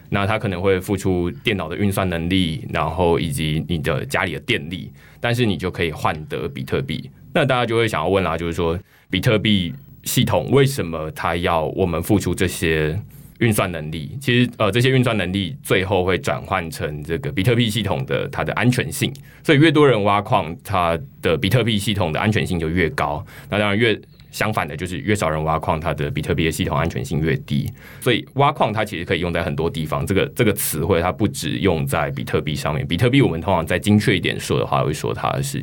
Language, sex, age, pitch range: Chinese, male, 20-39, 80-120 Hz